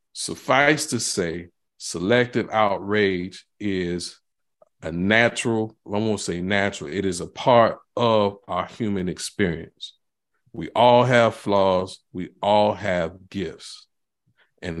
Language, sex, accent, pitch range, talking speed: English, male, American, 100-125 Hz, 120 wpm